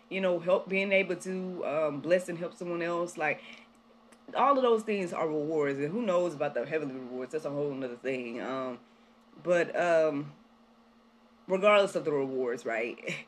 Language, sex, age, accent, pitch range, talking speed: English, female, 20-39, American, 140-225 Hz, 175 wpm